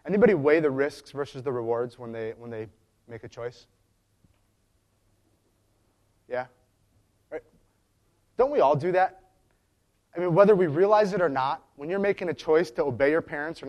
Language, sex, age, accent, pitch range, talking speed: English, male, 30-49, American, 100-140 Hz, 170 wpm